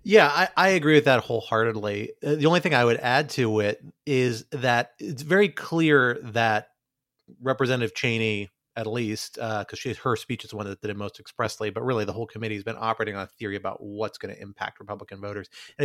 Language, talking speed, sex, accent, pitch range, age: English, 215 wpm, male, American, 105-140 Hz, 30-49